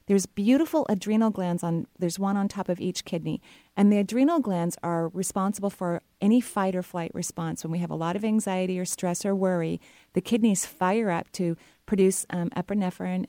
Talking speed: 195 wpm